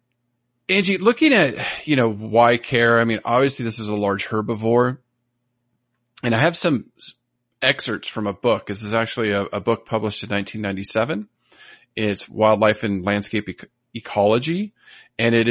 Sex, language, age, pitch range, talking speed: male, English, 40-59, 110-140 Hz, 150 wpm